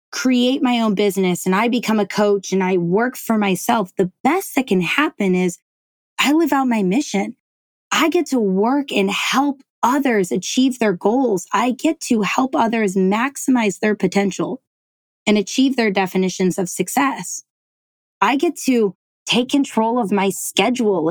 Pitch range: 195-250 Hz